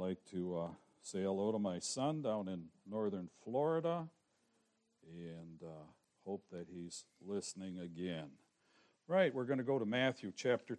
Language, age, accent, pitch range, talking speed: English, 60-79, American, 100-130 Hz, 150 wpm